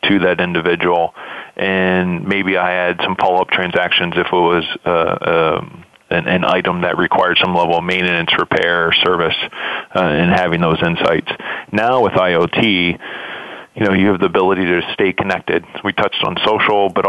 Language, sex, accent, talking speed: English, male, American, 175 wpm